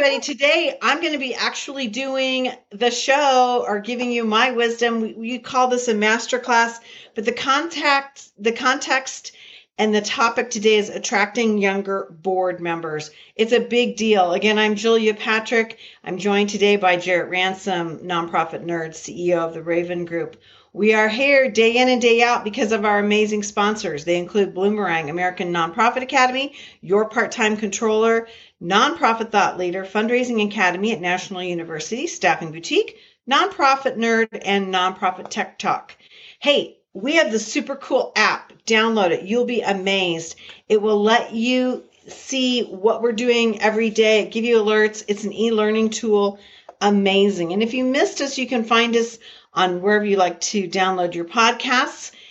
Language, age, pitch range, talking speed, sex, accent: English, 40-59, 195-250 Hz, 160 wpm, female, American